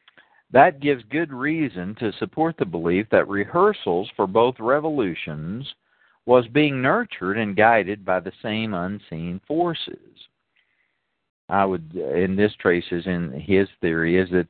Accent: American